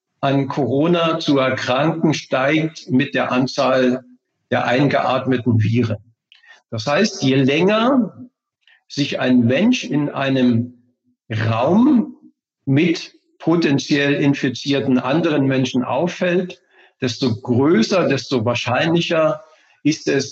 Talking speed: 95 wpm